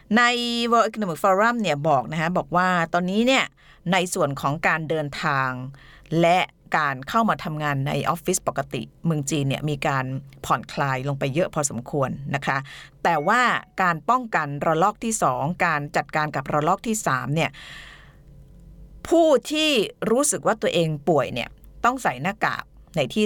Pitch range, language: 145-190 Hz, Thai